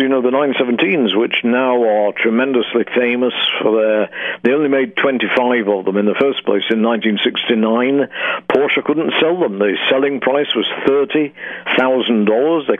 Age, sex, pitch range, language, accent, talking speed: 60-79, male, 110-125 Hz, English, British, 155 wpm